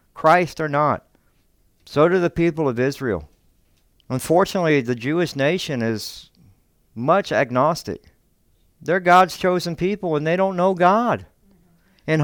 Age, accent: 60-79, American